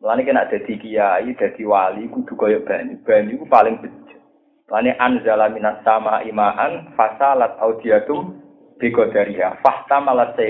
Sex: male